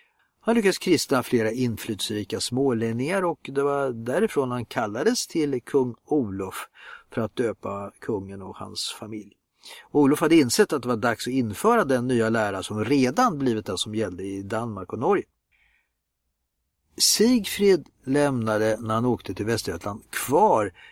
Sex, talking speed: male, 150 wpm